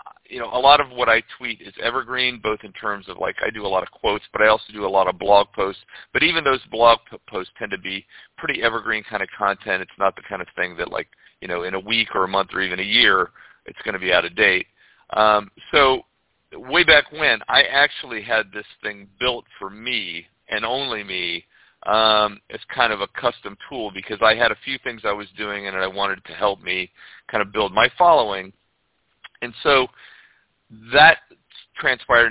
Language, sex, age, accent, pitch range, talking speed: English, male, 40-59, American, 100-130 Hz, 220 wpm